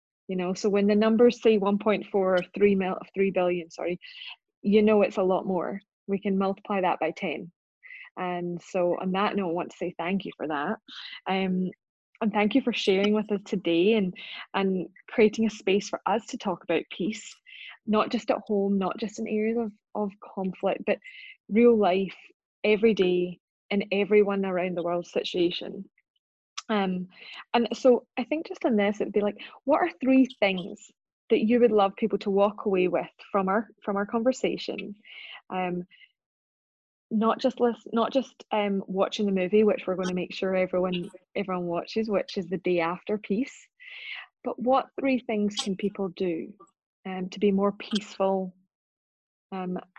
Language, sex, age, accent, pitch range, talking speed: English, female, 20-39, British, 185-225 Hz, 180 wpm